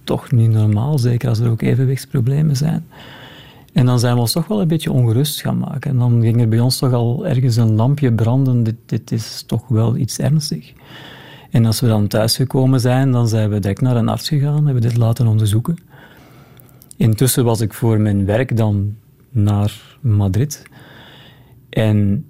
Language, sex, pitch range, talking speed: Dutch, male, 110-135 Hz, 190 wpm